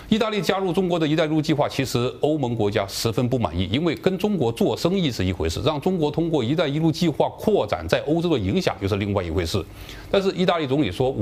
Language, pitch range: Chinese, 100-145 Hz